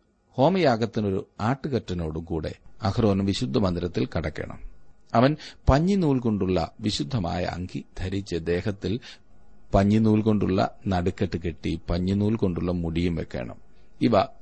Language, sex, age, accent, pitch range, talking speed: Malayalam, male, 40-59, native, 95-120 Hz, 90 wpm